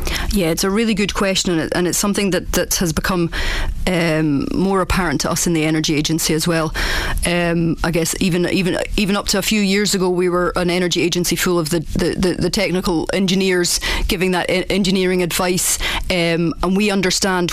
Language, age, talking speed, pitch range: English, 30-49, 200 wpm, 165-185 Hz